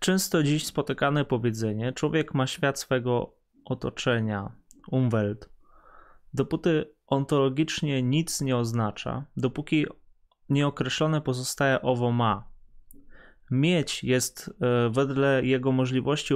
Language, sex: Polish, male